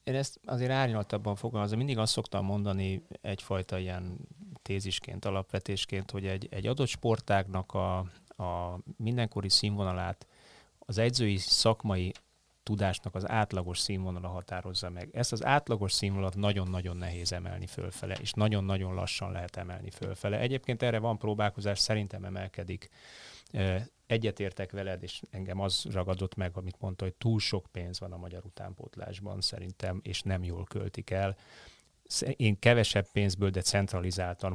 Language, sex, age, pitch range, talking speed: Hungarian, male, 30-49, 95-105 Hz, 140 wpm